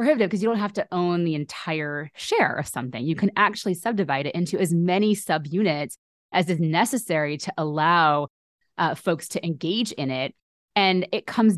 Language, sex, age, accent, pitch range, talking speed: English, female, 20-39, American, 155-205 Hz, 180 wpm